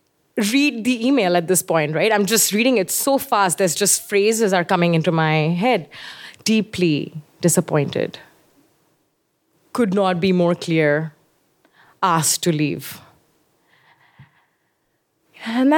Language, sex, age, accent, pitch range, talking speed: English, female, 20-39, Indian, 165-215 Hz, 120 wpm